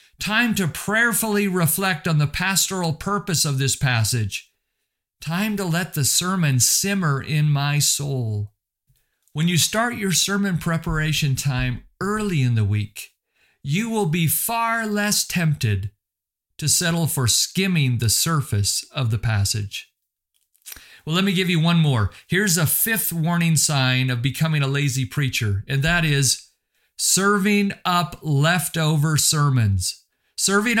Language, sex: English, male